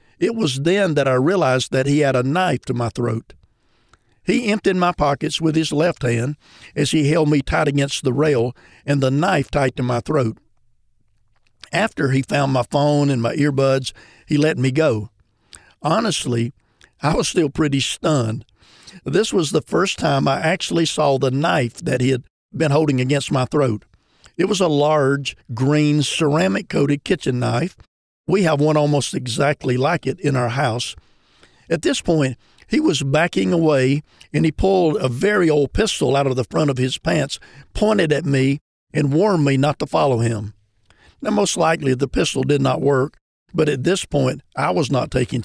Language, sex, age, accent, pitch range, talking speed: English, male, 50-69, American, 125-155 Hz, 185 wpm